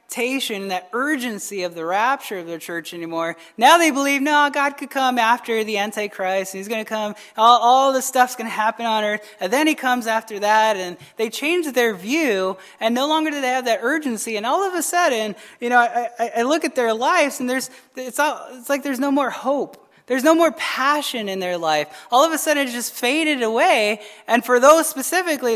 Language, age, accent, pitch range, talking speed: English, 20-39, American, 195-275 Hz, 220 wpm